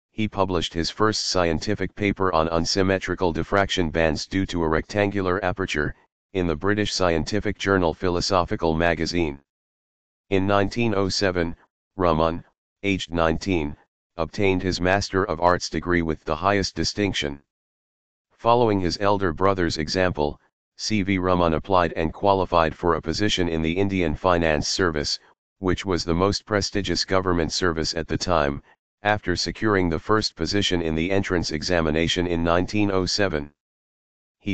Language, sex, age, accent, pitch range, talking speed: English, male, 40-59, American, 80-95 Hz, 135 wpm